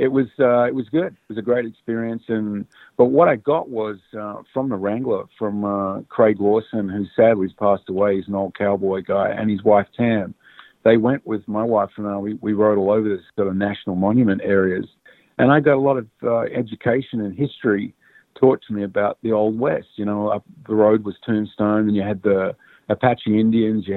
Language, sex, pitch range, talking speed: English, male, 100-120 Hz, 220 wpm